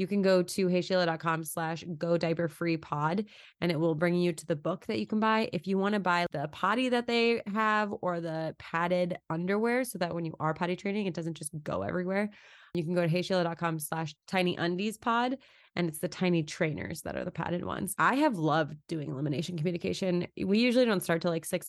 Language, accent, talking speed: English, American, 220 wpm